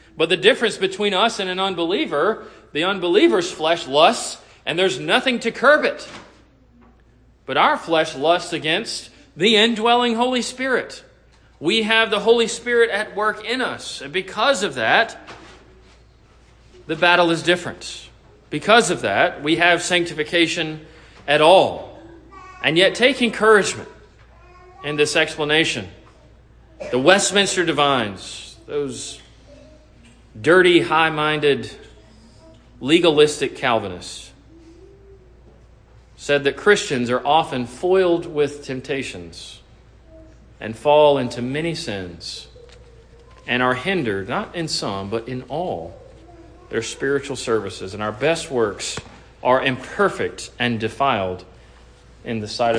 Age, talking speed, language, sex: 40-59, 120 wpm, English, male